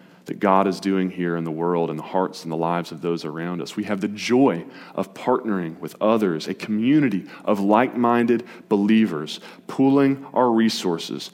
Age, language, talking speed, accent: 30-49, English, 180 wpm, American